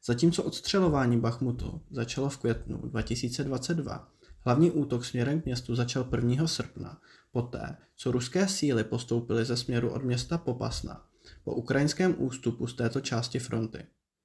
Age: 20-39